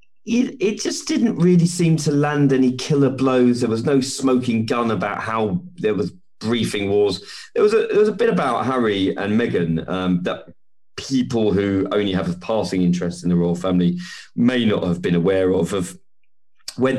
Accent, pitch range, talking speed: British, 90-130 Hz, 190 wpm